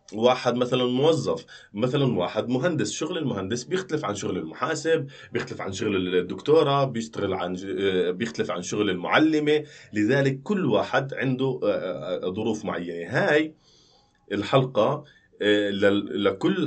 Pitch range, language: 95-130 Hz, Arabic